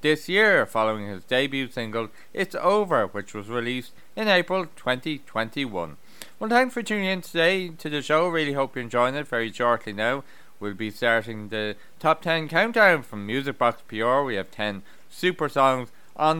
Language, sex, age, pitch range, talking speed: English, male, 30-49, 115-155 Hz, 175 wpm